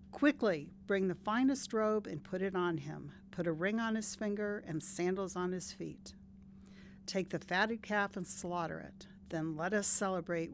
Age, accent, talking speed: 60-79, American, 180 wpm